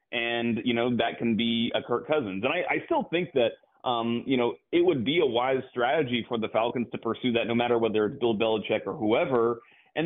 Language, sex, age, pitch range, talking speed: English, male, 30-49, 110-130 Hz, 235 wpm